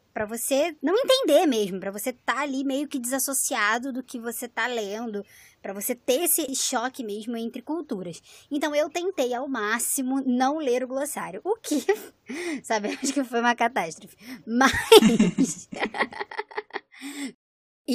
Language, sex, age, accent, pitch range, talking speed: Portuguese, male, 20-39, Brazilian, 210-275 Hz, 140 wpm